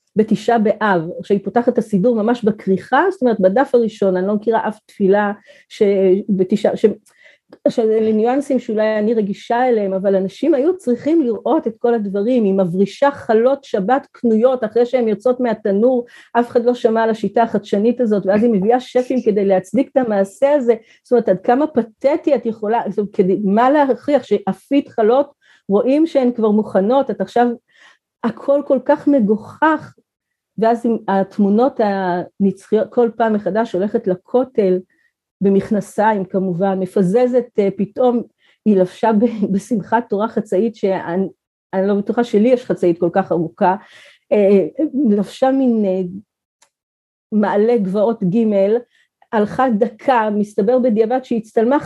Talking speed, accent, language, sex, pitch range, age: 135 wpm, native, Hebrew, female, 200-250 Hz, 40-59